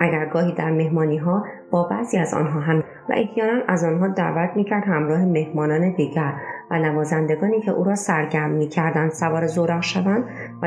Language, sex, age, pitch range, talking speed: Persian, female, 30-49, 155-190 Hz, 175 wpm